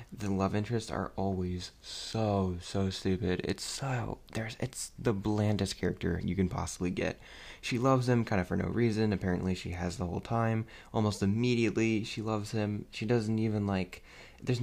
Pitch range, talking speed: 95-135 Hz, 175 wpm